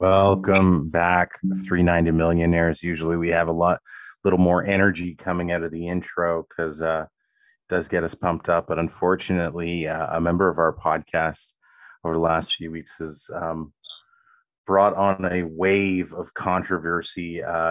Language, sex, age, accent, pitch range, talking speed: English, male, 30-49, American, 80-95 Hz, 155 wpm